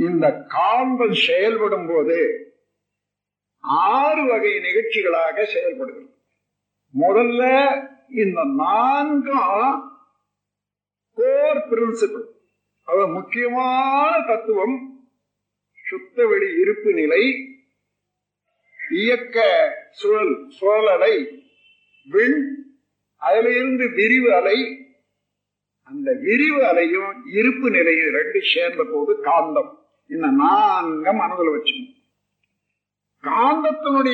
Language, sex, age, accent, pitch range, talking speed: Tamil, male, 50-69, native, 230-335 Hz, 55 wpm